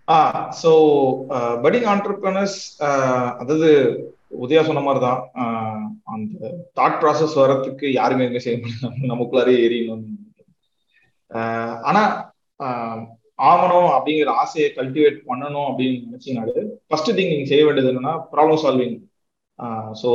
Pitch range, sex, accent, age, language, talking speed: 125-175 Hz, male, native, 30-49, Tamil, 100 wpm